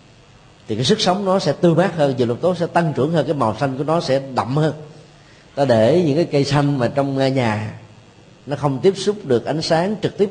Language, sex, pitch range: Vietnamese, male, 115-150 Hz